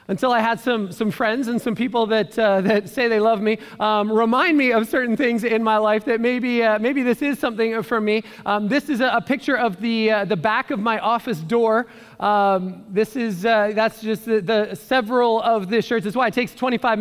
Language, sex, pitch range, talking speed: English, male, 215-240 Hz, 220 wpm